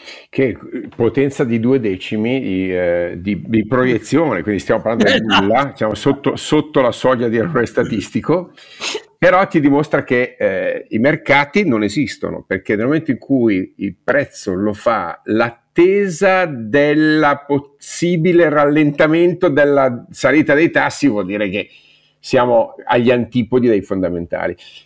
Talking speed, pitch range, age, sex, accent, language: 135 wpm, 105-145 Hz, 50-69, male, native, Italian